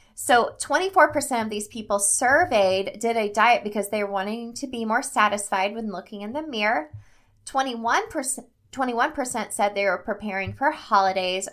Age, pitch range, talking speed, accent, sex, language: 20-39, 185-240 Hz, 155 wpm, American, female, English